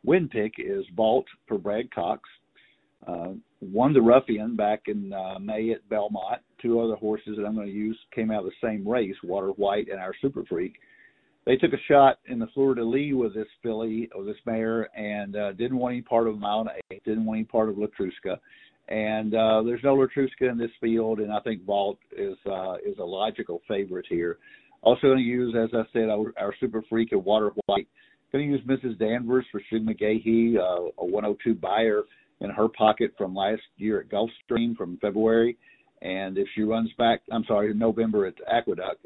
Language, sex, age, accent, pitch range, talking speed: English, male, 50-69, American, 105-125 Hz, 200 wpm